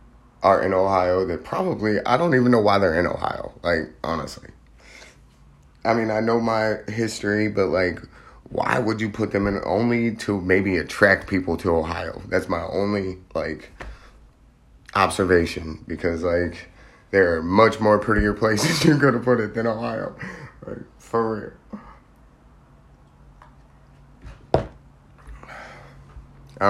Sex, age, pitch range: male, 30-49, 90-110 Hz